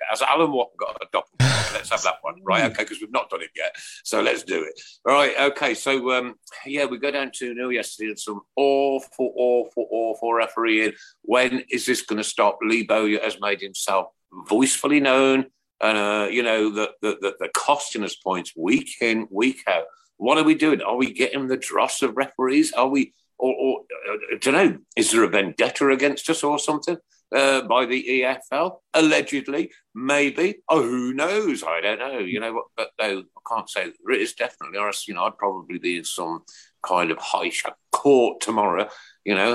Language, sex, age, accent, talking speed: English, male, 50-69, British, 205 wpm